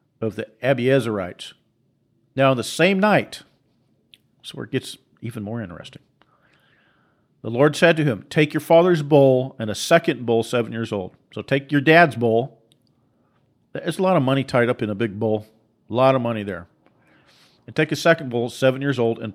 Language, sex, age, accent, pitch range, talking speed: English, male, 50-69, American, 115-140 Hz, 190 wpm